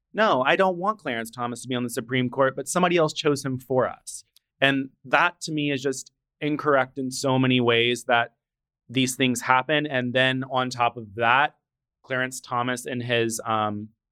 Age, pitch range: 20-39, 120-140 Hz